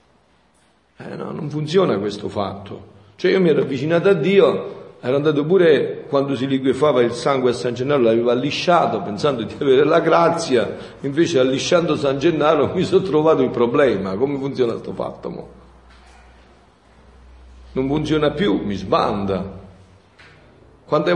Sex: male